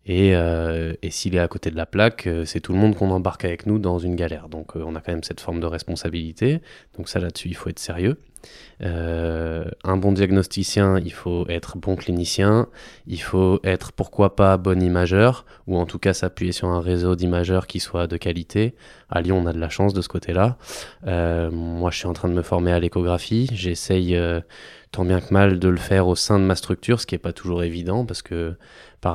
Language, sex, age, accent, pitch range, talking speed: French, male, 20-39, French, 85-95 Hz, 235 wpm